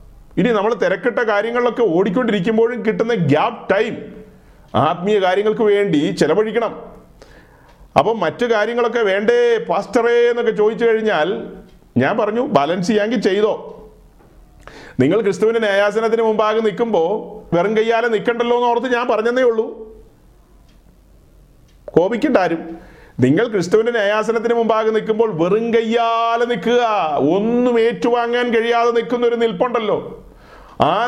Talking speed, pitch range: 100 wpm, 205-240 Hz